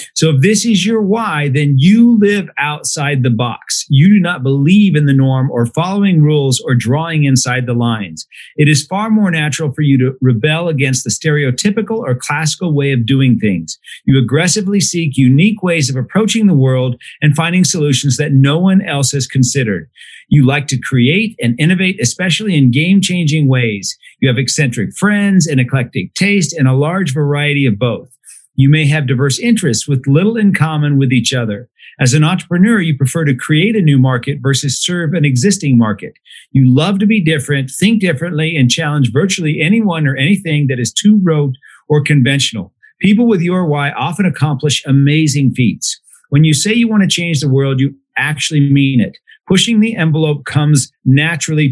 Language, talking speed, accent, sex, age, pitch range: English, 185 wpm, American, male, 50-69, 135-180 Hz